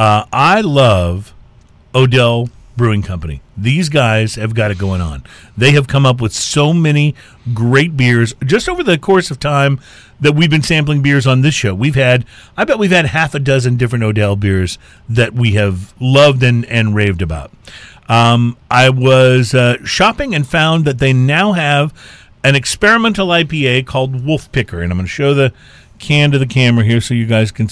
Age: 40-59